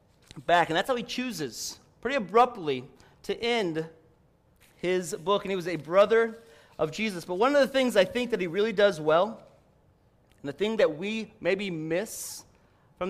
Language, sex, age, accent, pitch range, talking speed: English, male, 30-49, American, 175-235 Hz, 180 wpm